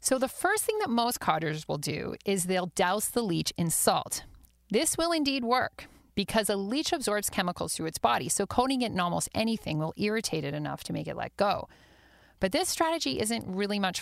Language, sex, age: English, female, 40-59